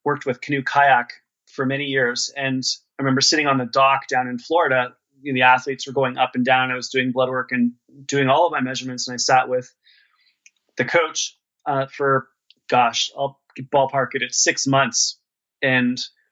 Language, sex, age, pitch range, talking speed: English, male, 30-49, 125-140 Hz, 190 wpm